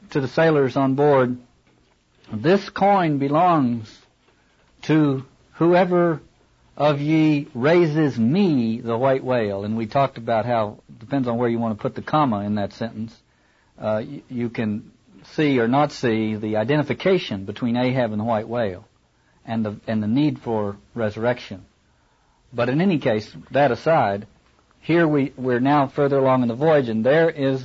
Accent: American